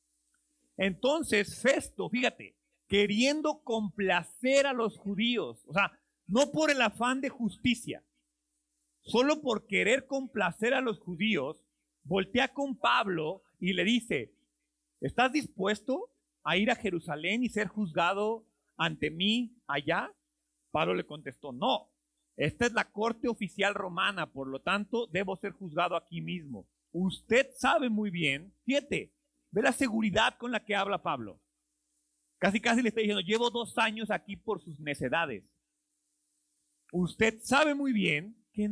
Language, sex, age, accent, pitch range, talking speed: Spanish, male, 40-59, Mexican, 185-270 Hz, 140 wpm